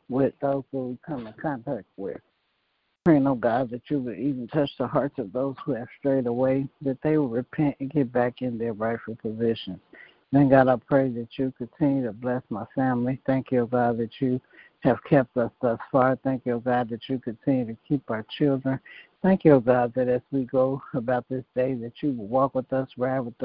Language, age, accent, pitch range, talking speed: English, 60-79, American, 125-140 Hz, 225 wpm